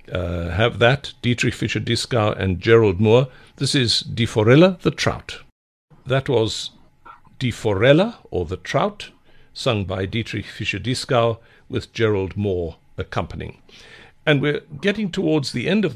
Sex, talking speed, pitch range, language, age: male, 135 wpm, 105-135 Hz, English, 60-79